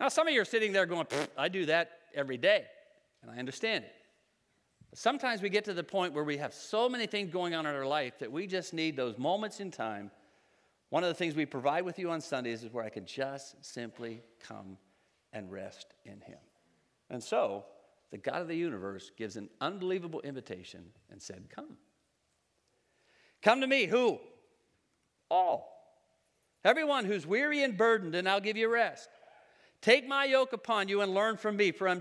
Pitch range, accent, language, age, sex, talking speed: 165-235 Hz, American, English, 50-69, male, 195 wpm